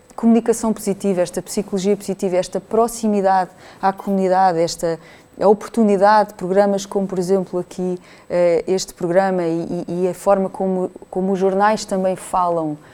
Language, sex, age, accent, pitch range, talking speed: Portuguese, female, 20-39, Brazilian, 170-200 Hz, 130 wpm